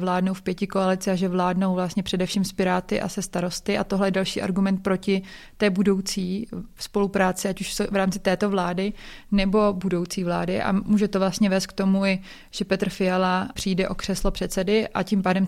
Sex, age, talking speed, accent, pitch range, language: female, 20-39, 185 wpm, native, 185-200 Hz, Czech